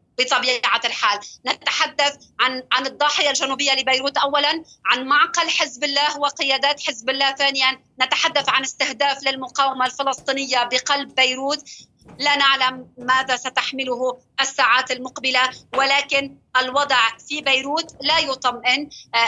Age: 30-49